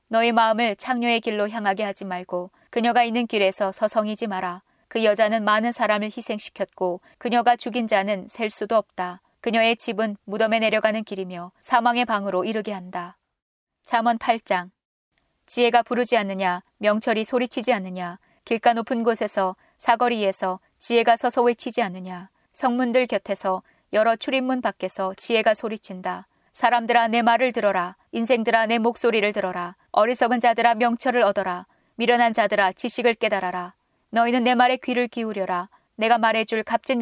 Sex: female